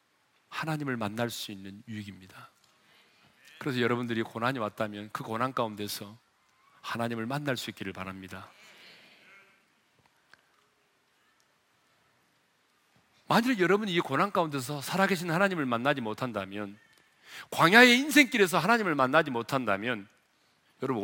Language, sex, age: Korean, male, 40-59